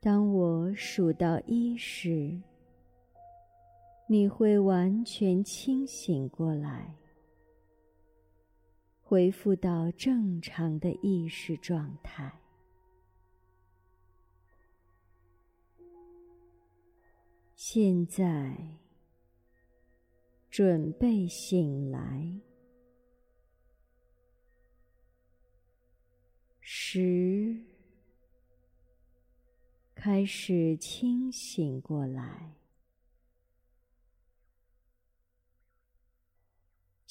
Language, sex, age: Chinese, male, 50-69